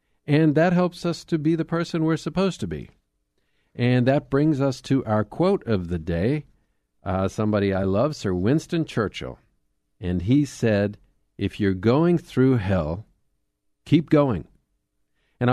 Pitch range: 105-150 Hz